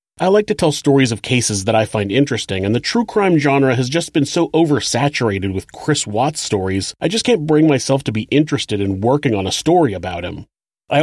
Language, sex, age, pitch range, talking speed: English, male, 30-49, 110-155 Hz, 225 wpm